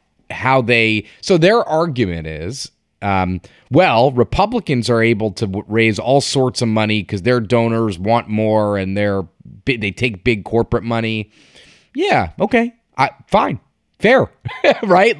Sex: male